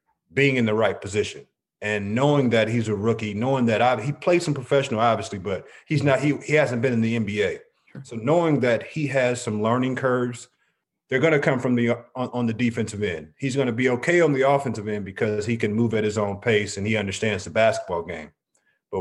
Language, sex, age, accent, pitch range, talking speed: English, male, 30-49, American, 115-145 Hz, 225 wpm